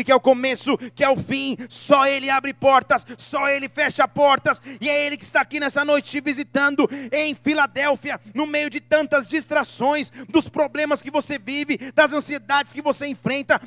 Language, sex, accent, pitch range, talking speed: Portuguese, male, Brazilian, 210-300 Hz, 190 wpm